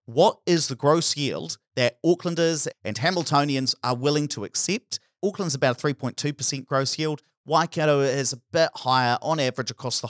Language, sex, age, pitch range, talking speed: English, male, 40-59, 120-160 Hz, 165 wpm